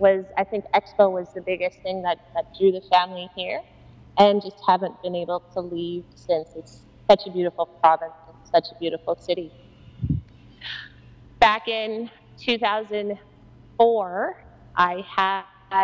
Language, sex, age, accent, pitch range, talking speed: English, female, 30-49, American, 175-200 Hz, 135 wpm